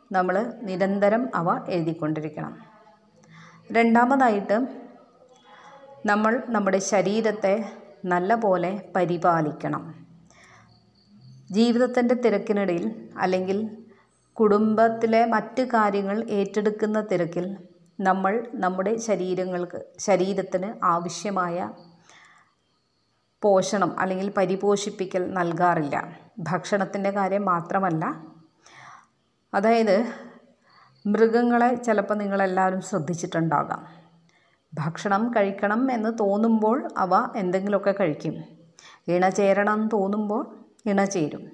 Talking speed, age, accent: 65 wpm, 30-49, native